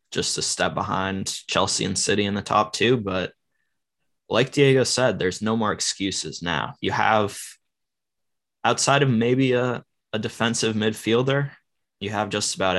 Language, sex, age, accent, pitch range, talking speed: English, male, 10-29, American, 95-110 Hz, 155 wpm